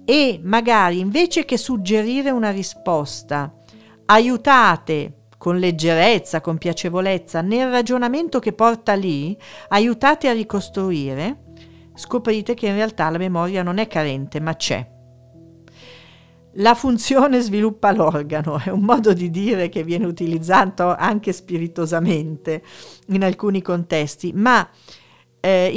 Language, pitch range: Italian, 165-225 Hz